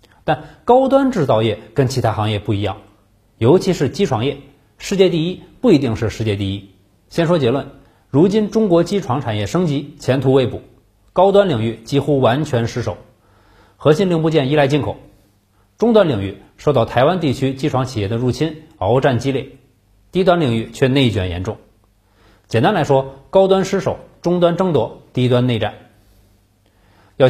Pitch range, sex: 105-150 Hz, male